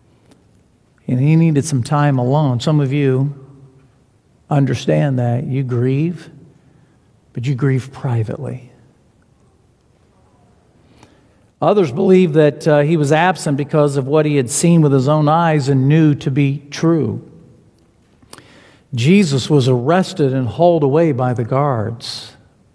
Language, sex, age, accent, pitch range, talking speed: English, male, 50-69, American, 135-205 Hz, 125 wpm